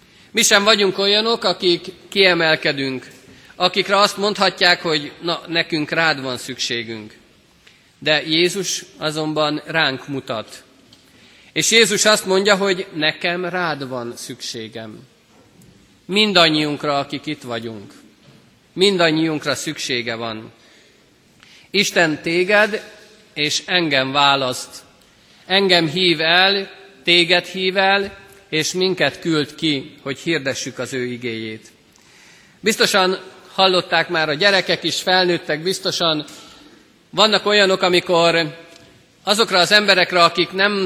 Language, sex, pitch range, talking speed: Hungarian, male, 145-185 Hz, 105 wpm